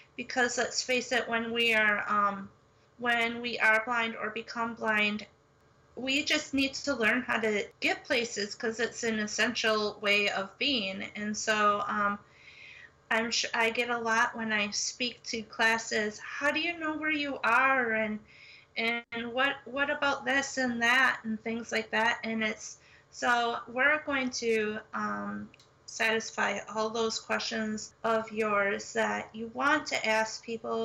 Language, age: English, 30-49